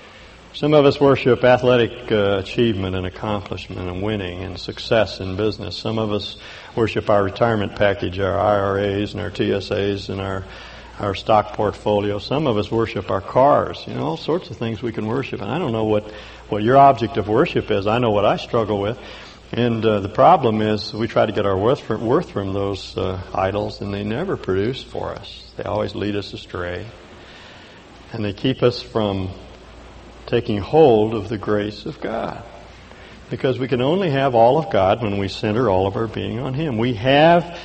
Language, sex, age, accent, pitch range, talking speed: English, male, 60-79, American, 100-120 Hz, 195 wpm